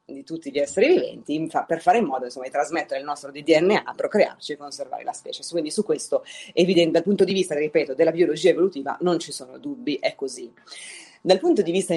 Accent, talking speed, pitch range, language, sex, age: native, 215 wpm, 150-190 Hz, Italian, female, 30-49